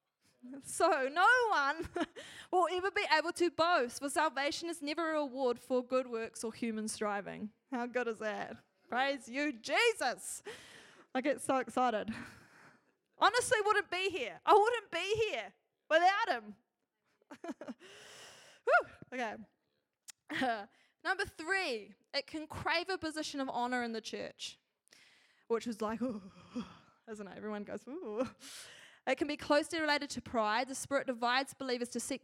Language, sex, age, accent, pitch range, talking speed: English, female, 10-29, Australian, 225-310 Hz, 145 wpm